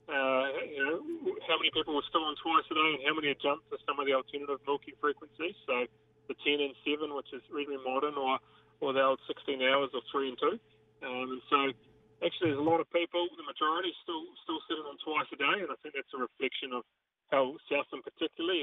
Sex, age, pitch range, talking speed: male, 30-49, 130-160 Hz, 230 wpm